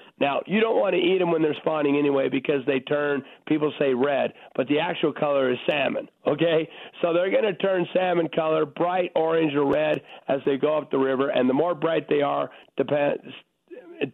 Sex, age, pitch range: male, 50-69, 140-170 Hz